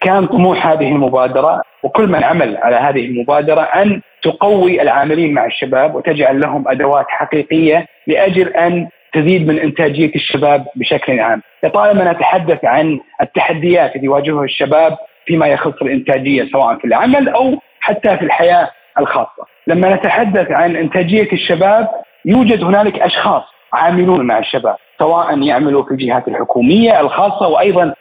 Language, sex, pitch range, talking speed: Arabic, male, 150-195 Hz, 135 wpm